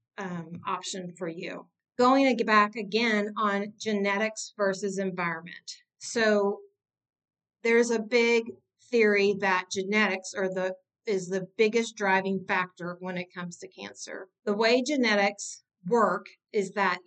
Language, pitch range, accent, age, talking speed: English, 190-230 Hz, American, 40-59, 135 wpm